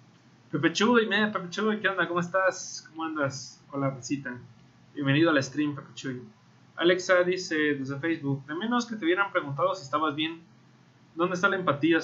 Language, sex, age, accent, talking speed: Spanish, male, 30-49, Mexican, 175 wpm